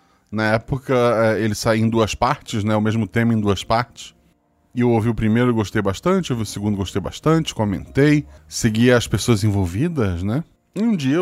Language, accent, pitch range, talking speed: Portuguese, Brazilian, 105-130 Hz, 200 wpm